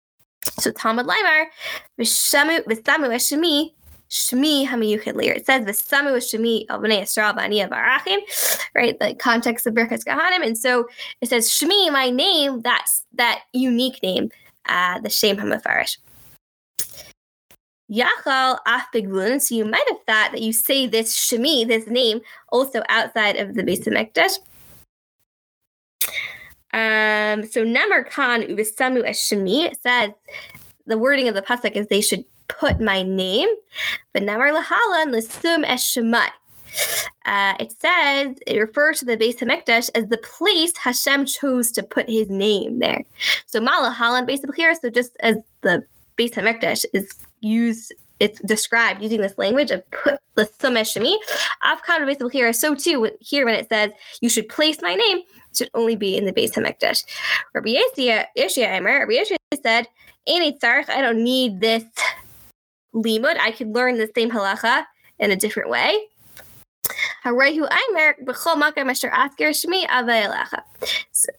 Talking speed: 135 wpm